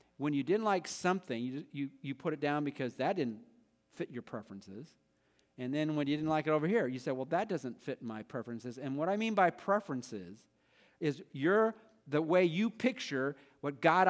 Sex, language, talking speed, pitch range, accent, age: male, English, 195 wpm, 105-160 Hz, American, 50-69